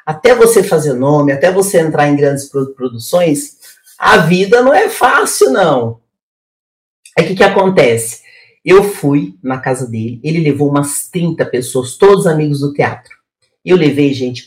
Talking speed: 155 wpm